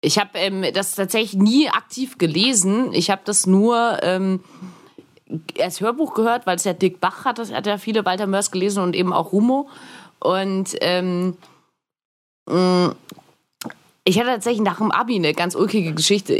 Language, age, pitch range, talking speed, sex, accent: German, 20-39, 175-220 Hz, 165 wpm, female, German